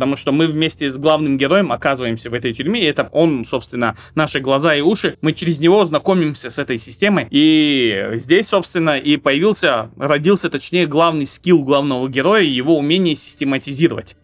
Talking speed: 170 wpm